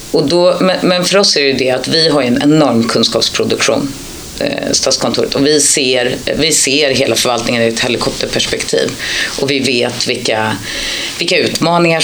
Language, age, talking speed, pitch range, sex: Swedish, 30-49, 165 wpm, 115-160 Hz, female